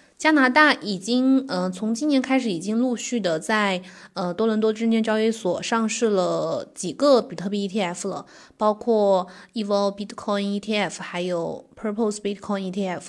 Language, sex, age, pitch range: Chinese, female, 20-39, 195-240 Hz